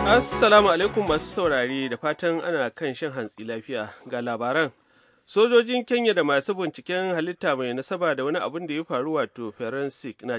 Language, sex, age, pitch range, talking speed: English, male, 30-49, 125-165 Hz, 145 wpm